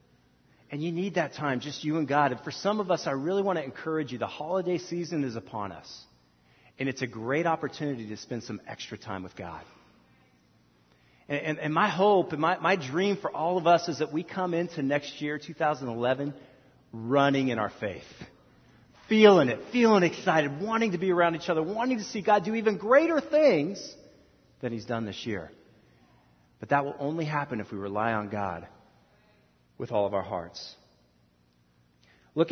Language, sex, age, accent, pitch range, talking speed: English, male, 40-59, American, 110-180 Hz, 190 wpm